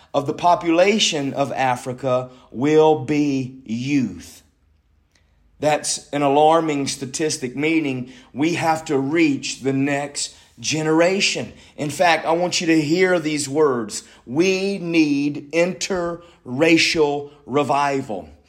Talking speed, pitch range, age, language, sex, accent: 105 wpm, 135-185 Hz, 40-59, English, male, American